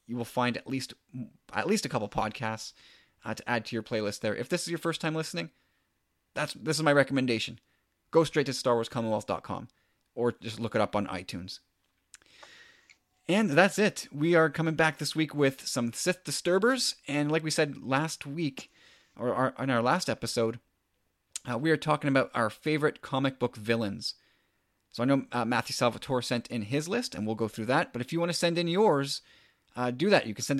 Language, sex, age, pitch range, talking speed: English, male, 30-49, 115-155 Hz, 205 wpm